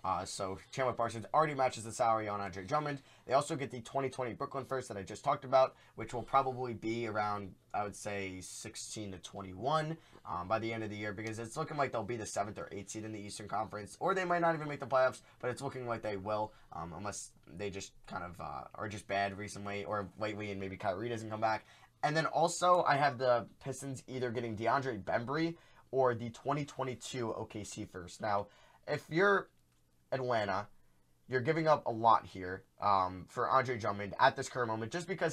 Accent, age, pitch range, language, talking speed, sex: American, 10-29, 100-130 Hz, English, 210 wpm, male